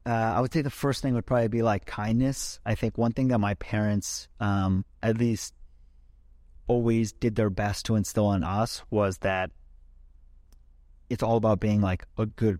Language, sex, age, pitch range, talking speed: English, male, 30-49, 95-115 Hz, 185 wpm